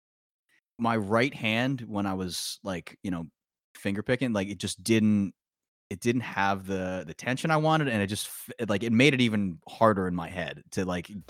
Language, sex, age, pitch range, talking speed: English, male, 20-39, 90-120 Hz, 195 wpm